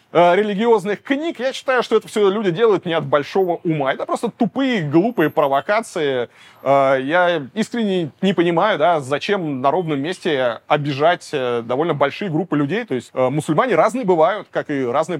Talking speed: 160 wpm